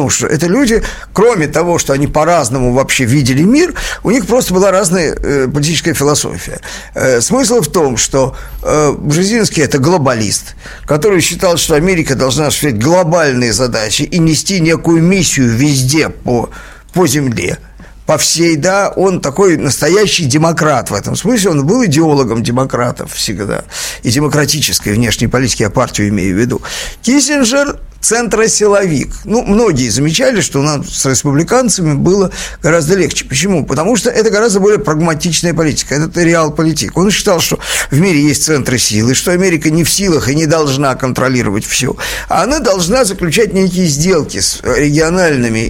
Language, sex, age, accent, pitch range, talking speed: Russian, male, 50-69, native, 135-195 Hz, 150 wpm